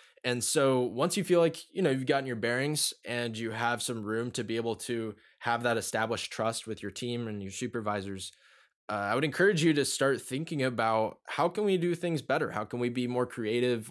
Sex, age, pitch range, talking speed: male, 20-39, 105-125 Hz, 225 wpm